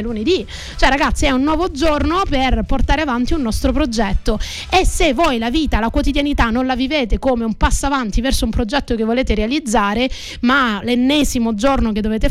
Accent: native